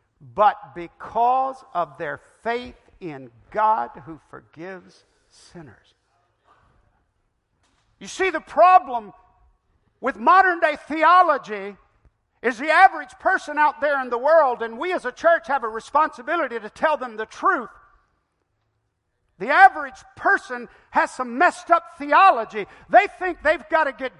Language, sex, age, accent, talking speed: English, male, 50-69, American, 130 wpm